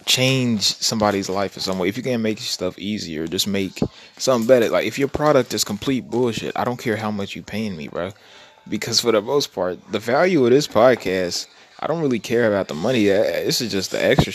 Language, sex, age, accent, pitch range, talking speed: English, male, 20-39, American, 100-145 Hz, 225 wpm